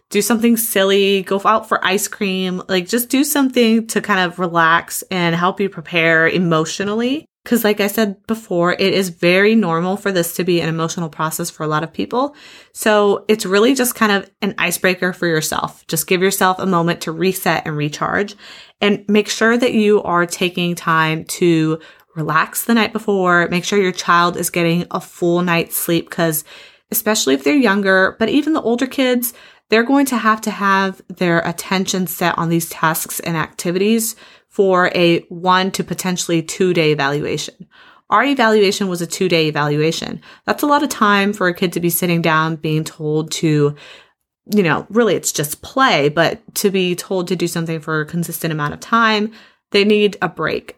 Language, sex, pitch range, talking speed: English, female, 165-210 Hz, 190 wpm